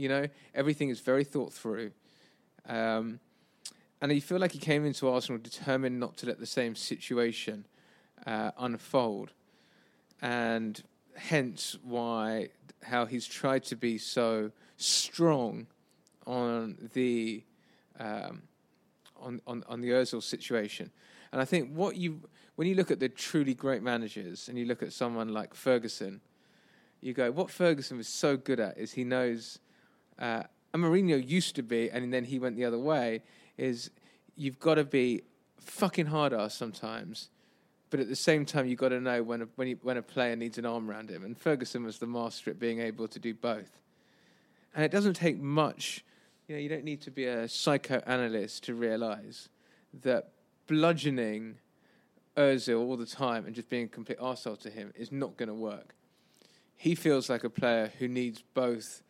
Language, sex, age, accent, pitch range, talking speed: English, male, 20-39, British, 115-145 Hz, 170 wpm